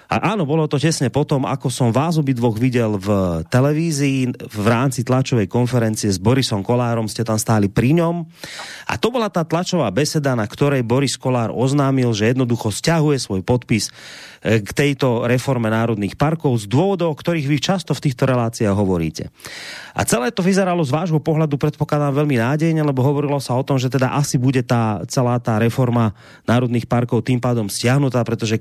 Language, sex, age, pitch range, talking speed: Slovak, male, 30-49, 115-150 Hz, 180 wpm